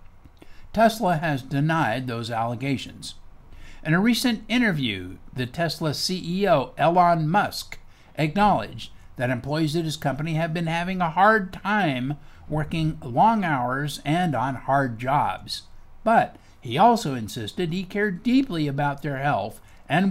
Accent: American